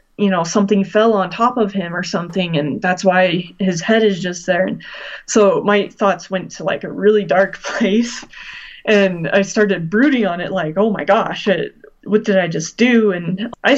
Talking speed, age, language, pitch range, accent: 200 wpm, 20-39, English, 180-215 Hz, American